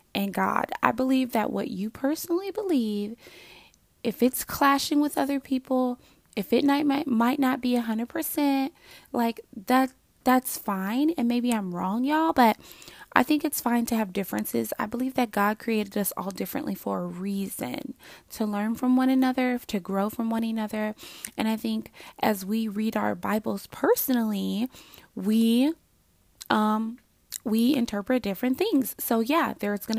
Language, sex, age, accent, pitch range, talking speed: English, female, 20-39, American, 210-260 Hz, 160 wpm